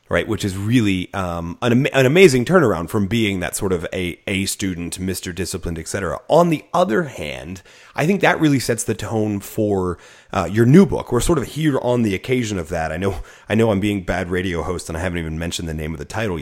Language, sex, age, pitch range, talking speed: English, male, 30-49, 90-115 Hz, 235 wpm